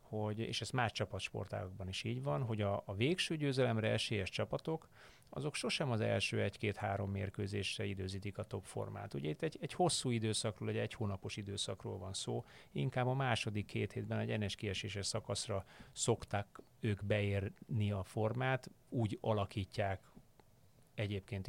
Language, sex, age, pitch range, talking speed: Hungarian, male, 30-49, 100-120 Hz, 145 wpm